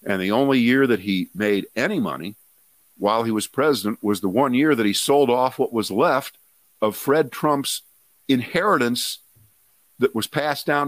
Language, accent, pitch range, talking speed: English, American, 100-140 Hz, 175 wpm